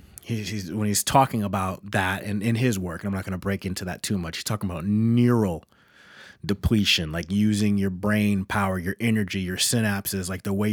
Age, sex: 30-49, male